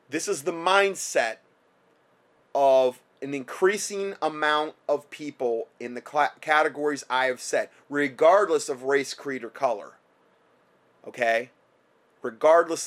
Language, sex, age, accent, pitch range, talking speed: English, male, 30-49, American, 130-185 Hz, 110 wpm